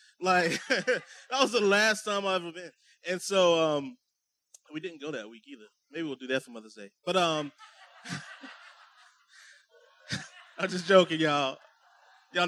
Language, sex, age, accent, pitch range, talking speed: English, male, 20-39, American, 130-175 Hz, 155 wpm